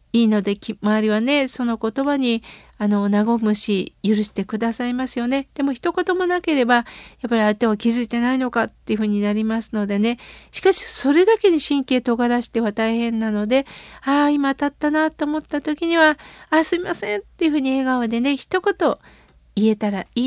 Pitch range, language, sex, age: 220-285 Hz, Japanese, female, 50-69